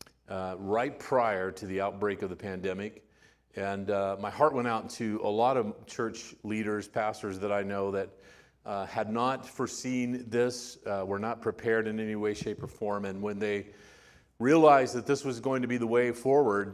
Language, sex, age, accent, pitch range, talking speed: English, male, 40-59, American, 95-115 Hz, 195 wpm